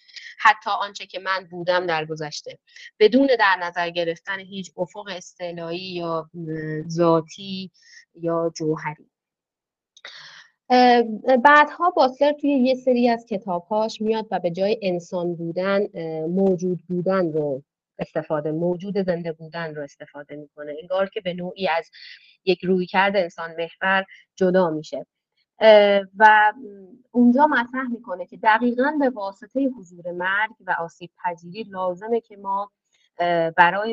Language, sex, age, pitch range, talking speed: Persian, female, 30-49, 170-215 Hz, 125 wpm